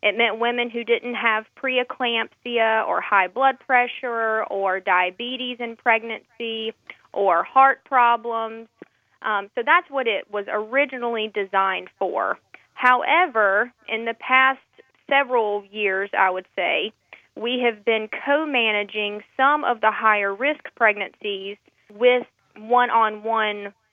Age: 20-39